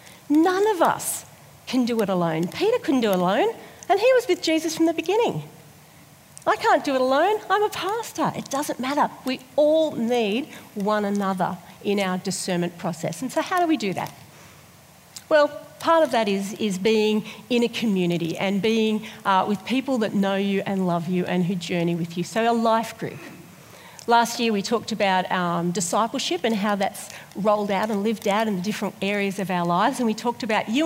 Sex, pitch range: female, 195-270 Hz